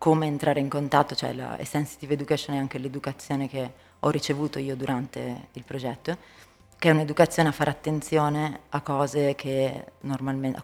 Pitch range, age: 130-150 Hz, 20-39